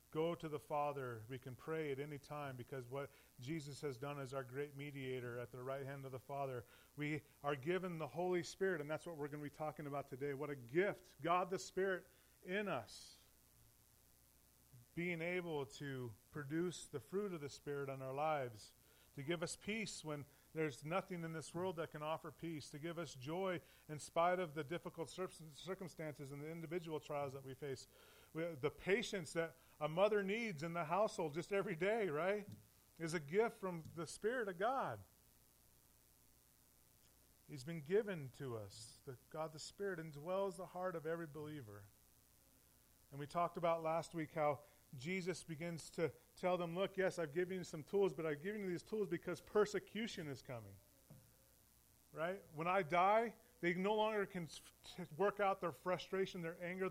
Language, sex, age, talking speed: English, male, 30-49, 180 wpm